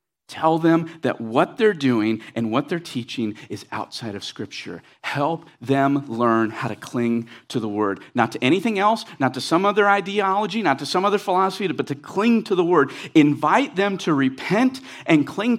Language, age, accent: English, 40-59, American